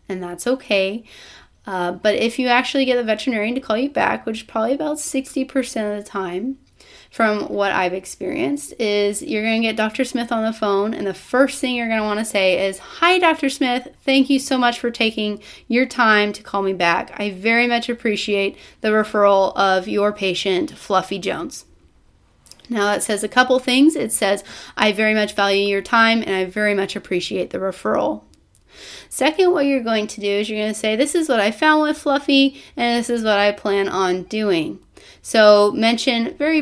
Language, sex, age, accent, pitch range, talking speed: English, female, 30-49, American, 200-255 Hz, 205 wpm